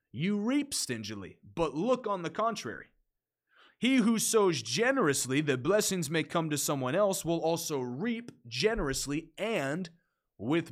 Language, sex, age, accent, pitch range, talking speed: English, male, 30-49, American, 130-185 Hz, 140 wpm